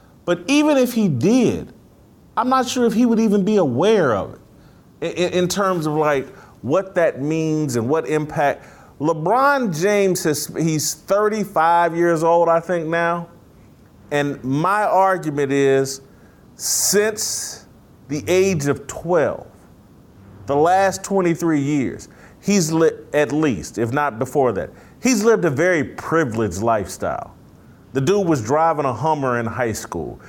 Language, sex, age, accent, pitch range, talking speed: English, male, 40-59, American, 145-195 Hz, 145 wpm